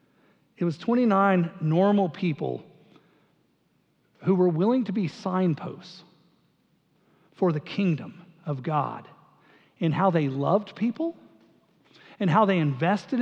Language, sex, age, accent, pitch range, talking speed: English, male, 50-69, American, 170-220 Hz, 115 wpm